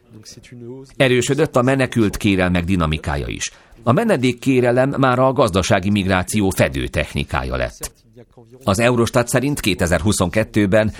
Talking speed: 105 wpm